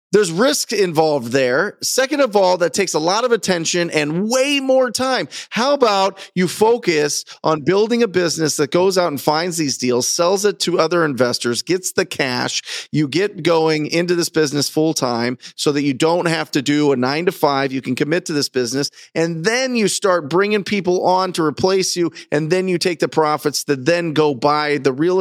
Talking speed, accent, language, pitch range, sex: 200 wpm, American, English, 160-205 Hz, male